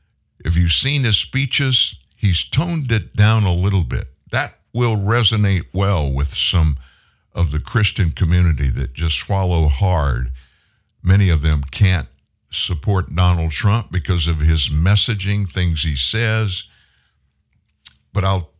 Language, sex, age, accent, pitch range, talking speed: English, male, 60-79, American, 80-100 Hz, 135 wpm